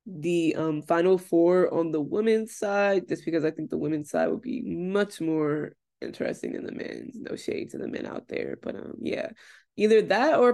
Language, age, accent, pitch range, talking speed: English, 20-39, American, 165-220 Hz, 205 wpm